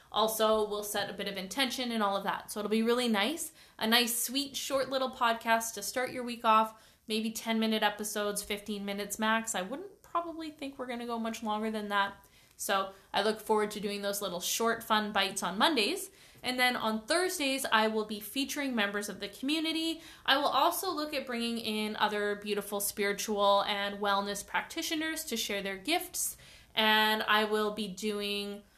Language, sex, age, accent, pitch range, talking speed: English, female, 20-39, American, 205-250 Hz, 190 wpm